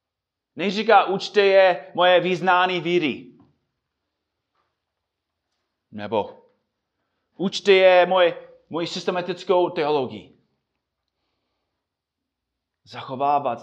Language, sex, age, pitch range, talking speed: Czech, male, 30-49, 120-185 Hz, 65 wpm